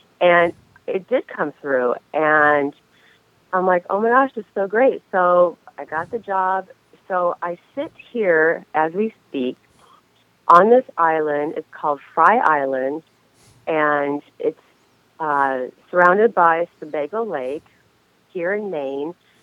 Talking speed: 135 wpm